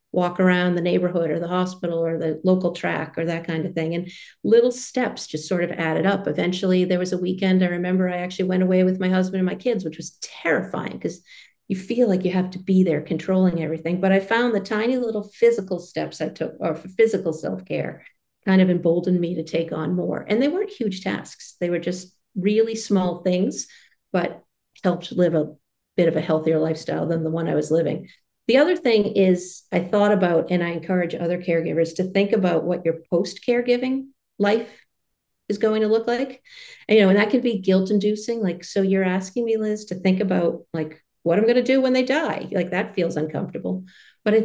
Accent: American